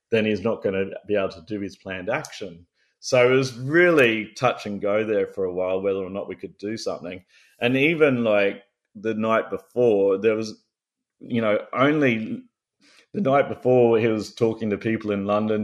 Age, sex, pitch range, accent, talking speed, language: 30-49, male, 100-120 Hz, Australian, 195 wpm, English